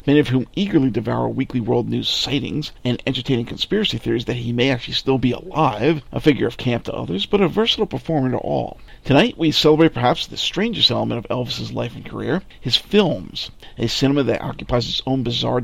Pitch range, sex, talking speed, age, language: 120-150 Hz, male, 205 wpm, 50-69, English